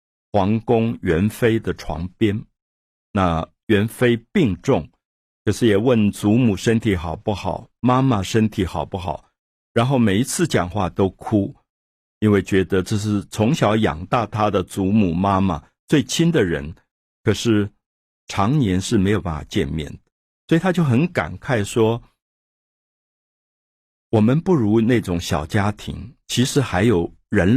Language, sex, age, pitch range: Chinese, male, 50-69, 90-120 Hz